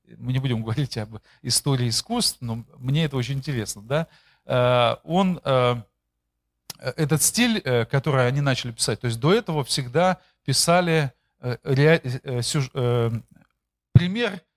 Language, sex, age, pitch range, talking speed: Russian, male, 40-59, 125-160 Hz, 105 wpm